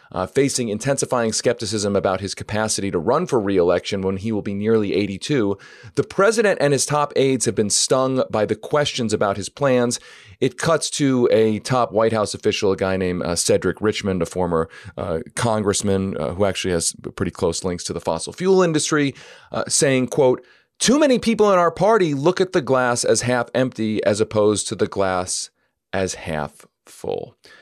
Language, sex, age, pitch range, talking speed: English, male, 40-59, 105-140 Hz, 185 wpm